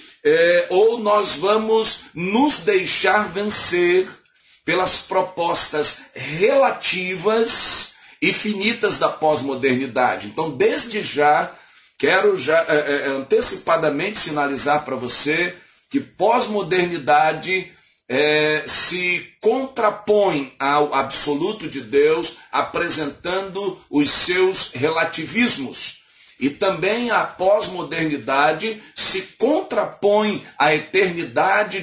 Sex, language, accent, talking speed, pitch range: male, Portuguese, Brazilian, 75 wpm, 150-210 Hz